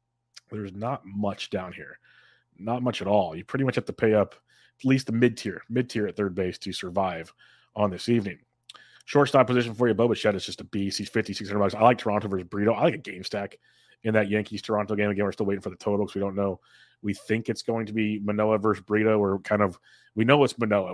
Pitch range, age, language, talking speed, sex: 100-115 Hz, 30-49, English, 245 wpm, male